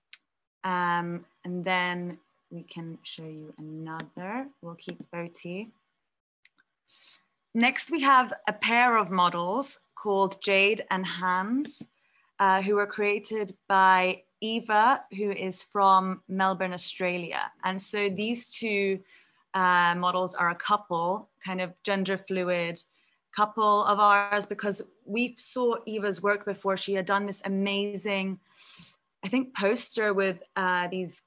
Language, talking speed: Portuguese, 125 wpm